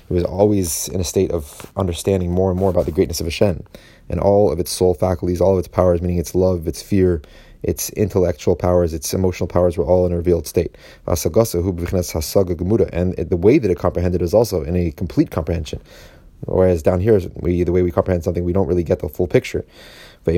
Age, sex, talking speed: 30-49, male, 210 wpm